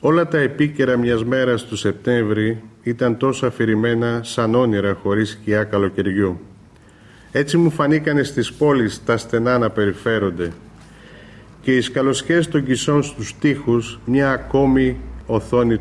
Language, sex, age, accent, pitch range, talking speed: Greek, male, 40-59, native, 105-130 Hz, 130 wpm